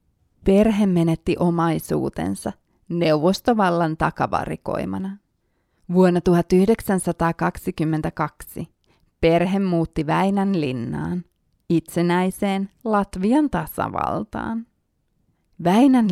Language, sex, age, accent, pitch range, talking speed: Finnish, female, 30-49, native, 160-195 Hz, 55 wpm